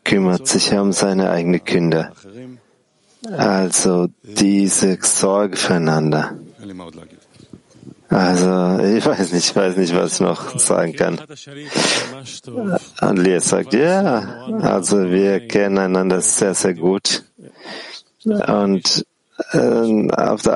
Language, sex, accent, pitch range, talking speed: German, male, German, 95-120 Hz, 100 wpm